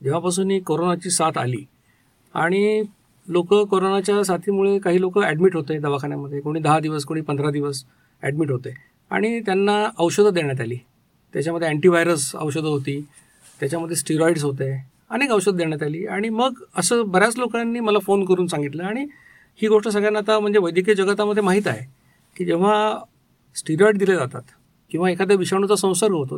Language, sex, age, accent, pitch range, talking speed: Marathi, male, 50-69, native, 150-205 Hz, 155 wpm